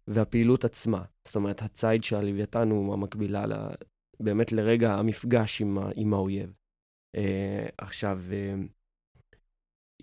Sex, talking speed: male, 120 wpm